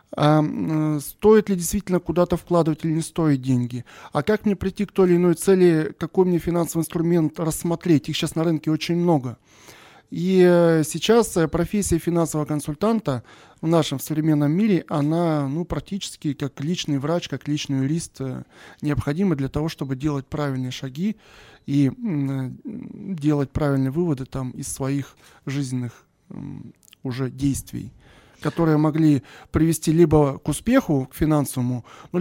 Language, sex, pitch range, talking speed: Russian, male, 140-175 Hz, 140 wpm